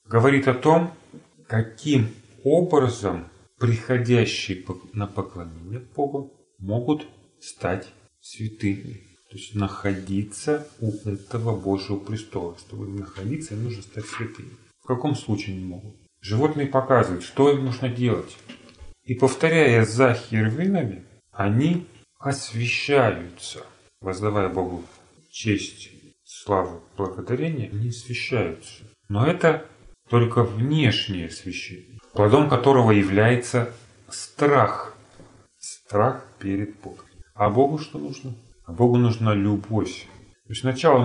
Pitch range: 100-130 Hz